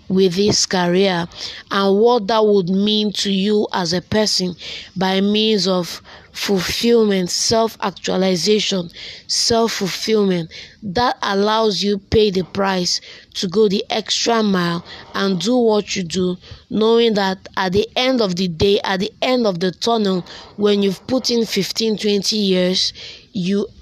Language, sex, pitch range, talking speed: English, female, 185-220 Hz, 145 wpm